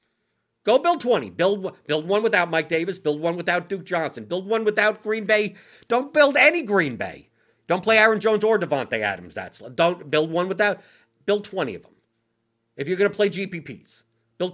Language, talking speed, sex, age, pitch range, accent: English, 190 wpm, male, 50-69, 120-195 Hz, American